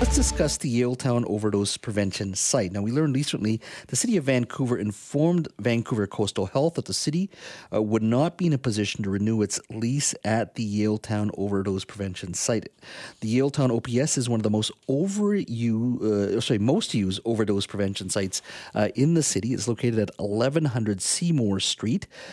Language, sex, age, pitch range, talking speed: English, male, 40-59, 100-125 Hz, 170 wpm